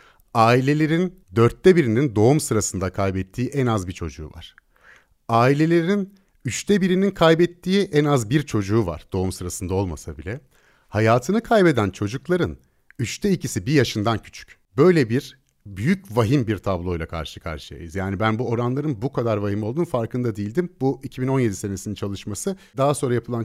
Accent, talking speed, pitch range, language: native, 145 wpm, 95-140 Hz, Turkish